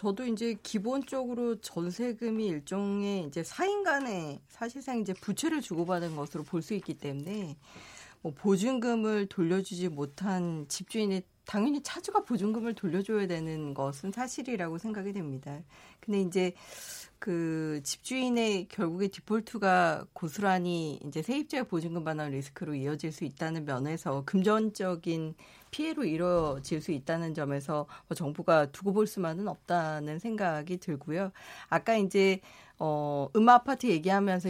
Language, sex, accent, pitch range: Korean, female, native, 165-230 Hz